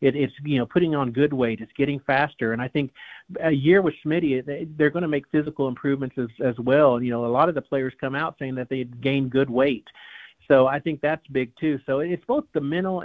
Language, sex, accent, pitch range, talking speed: English, male, American, 130-150 Hz, 245 wpm